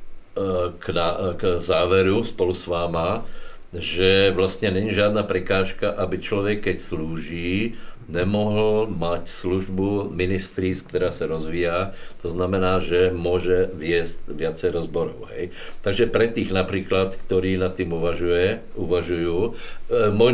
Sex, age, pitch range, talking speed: male, 60-79, 90-105 Hz, 120 wpm